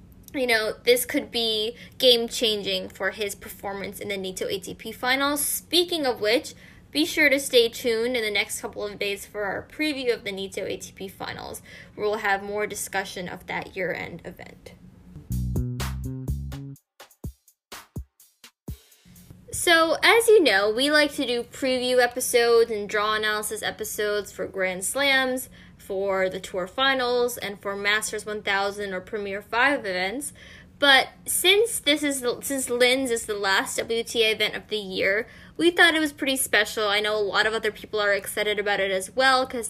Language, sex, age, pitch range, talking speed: English, female, 10-29, 200-260 Hz, 165 wpm